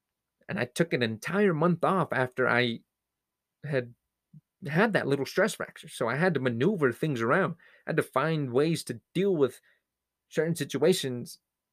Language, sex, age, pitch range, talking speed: English, male, 30-49, 120-155 Hz, 165 wpm